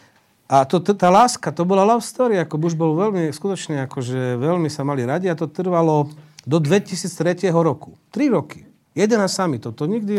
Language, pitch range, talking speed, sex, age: Slovak, 140-180 Hz, 195 wpm, male, 40-59